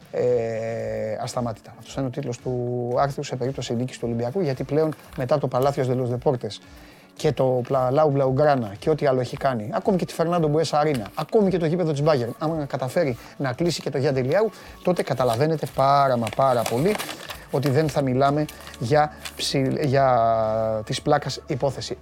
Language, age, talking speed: Greek, 30-49, 175 wpm